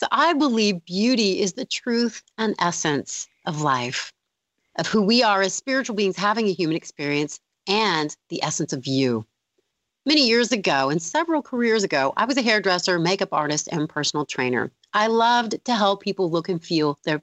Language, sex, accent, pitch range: English, female, American, 155-225 Hz